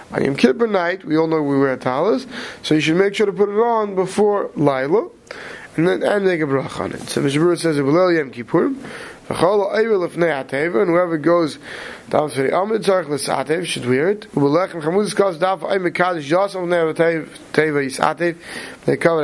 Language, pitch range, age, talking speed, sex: English, 150-195 Hz, 30-49, 135 wpm, male